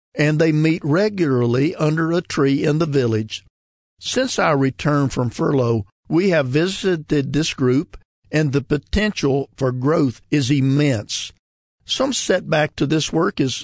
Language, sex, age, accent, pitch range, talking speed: English, male, 50-69, American, 130-160 Hz, 145 wpm